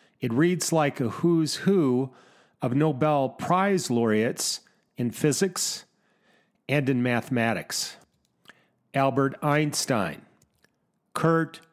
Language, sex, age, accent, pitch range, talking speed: English, male, 40-59, American, 120-155 Hz, 90 wpm